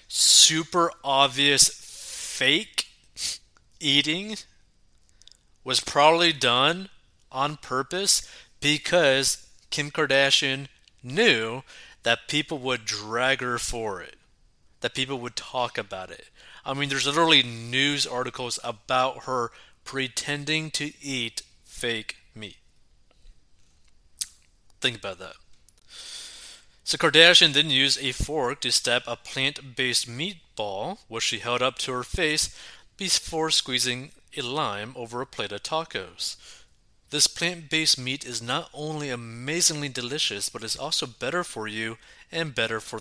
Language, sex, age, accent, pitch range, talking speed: English, male, 30-49, American, 120-155 Hz, 120 wpm